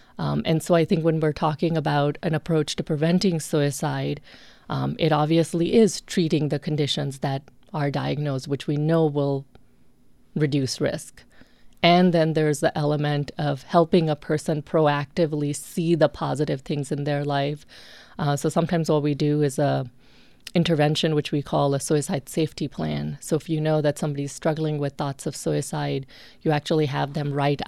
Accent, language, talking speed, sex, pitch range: American, English, 170 wpm, female, 145-165 Hz